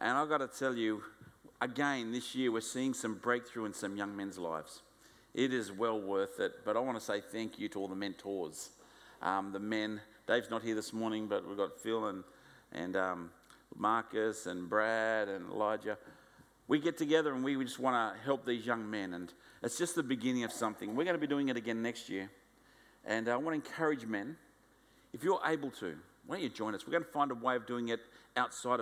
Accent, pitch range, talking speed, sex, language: Australian, 110-145 Hz, 225 wpm, male, English